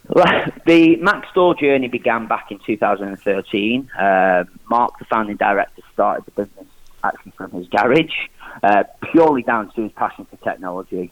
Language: English